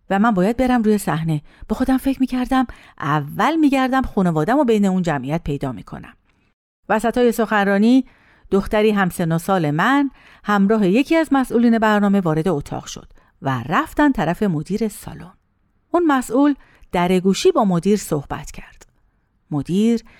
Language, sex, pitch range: Persian, female, 175-275 Hz